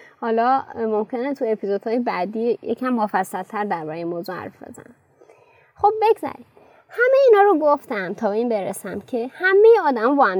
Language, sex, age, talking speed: Persian, female, 20-39, 165 wpm